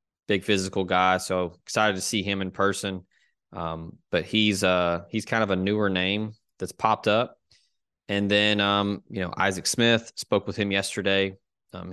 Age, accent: 20-39, American